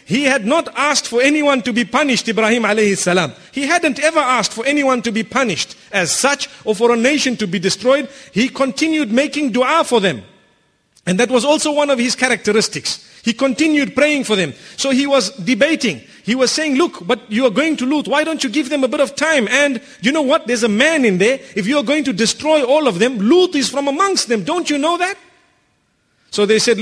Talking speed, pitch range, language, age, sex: 225 wpm, 230-285 Hz, English, 50-69, male